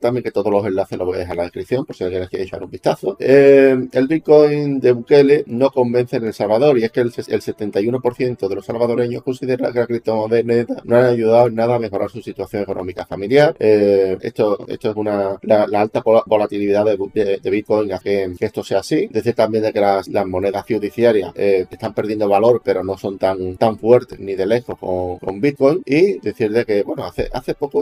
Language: Spanish